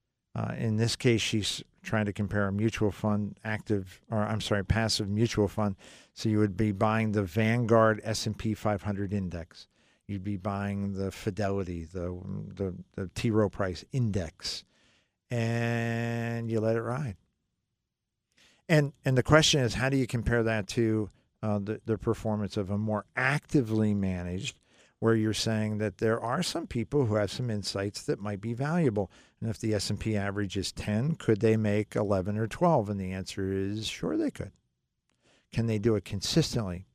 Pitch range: 100-120 Hz